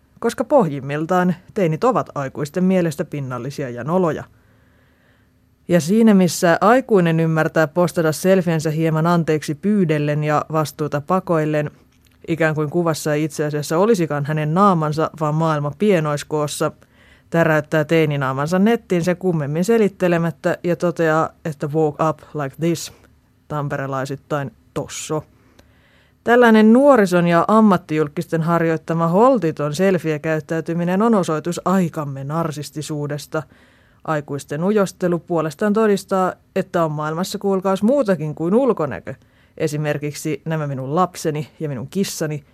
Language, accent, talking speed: Finnish, native, 110 wpm